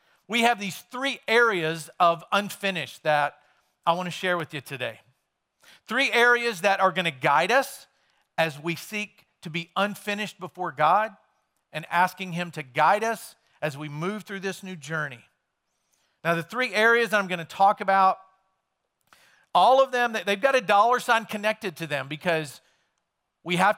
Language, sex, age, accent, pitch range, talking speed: English, male, 50-69, American, 145-200 Hz, 160 wpm